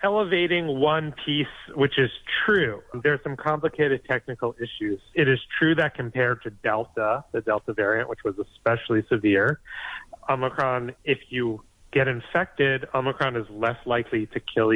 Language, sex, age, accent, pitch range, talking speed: English, male, 30-49, American, 110-135 Hz, 150 wpm